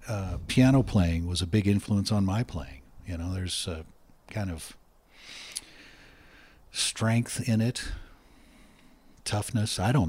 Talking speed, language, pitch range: 130 wpm, English, 90-110 Hz